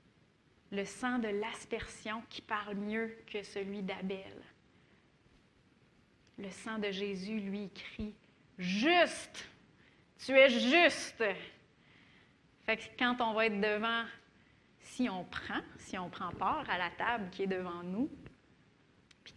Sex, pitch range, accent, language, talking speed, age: female, 195-235 Hz, Canadian, French, 130 wpm, 30-49